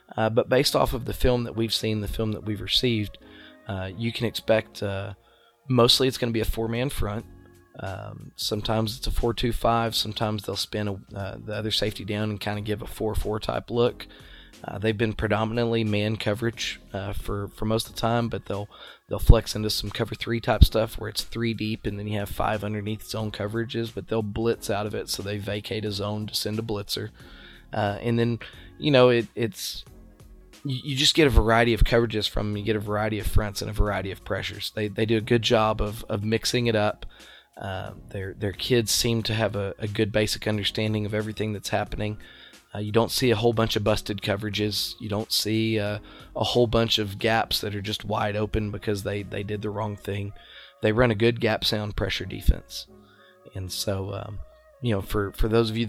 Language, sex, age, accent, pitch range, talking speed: English, male, 20-39, American, 105-115 Hz, 220 wpm